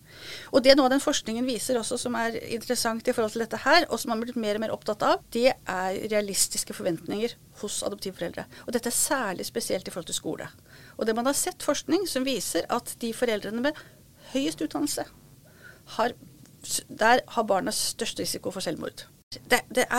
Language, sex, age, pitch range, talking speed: English, female, 40-59, 210-270 Hz, 195 wpm